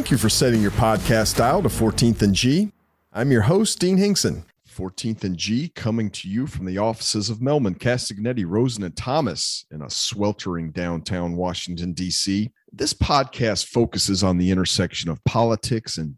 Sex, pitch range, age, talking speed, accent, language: male, 95-125 Hz, 40-59, 170 wpm, American, English